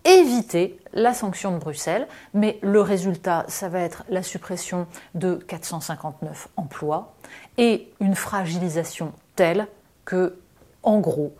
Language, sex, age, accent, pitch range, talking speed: French, female, 30-49, French, 190-275 Hz, 120 wpm